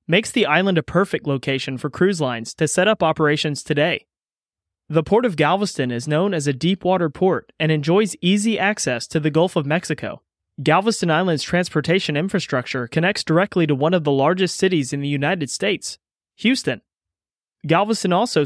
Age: 30-49